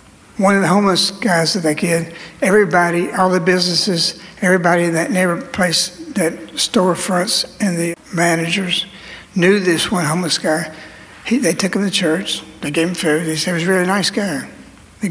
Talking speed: 180 wpm